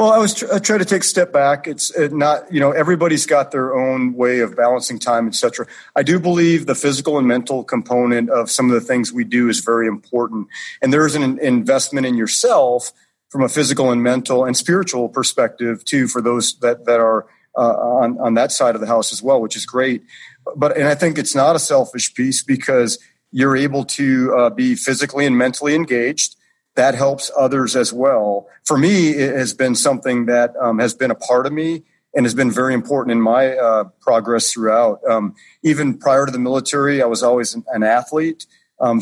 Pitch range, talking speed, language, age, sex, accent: 115-145 Hz, 210 wpm, English, 40-59, male, American